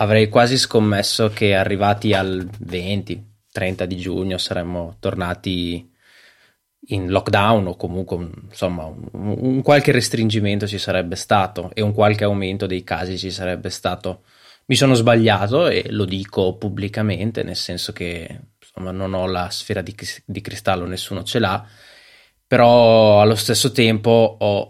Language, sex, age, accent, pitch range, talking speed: Italian, male, 20-39, native, 95-110 Hz, 140 wpm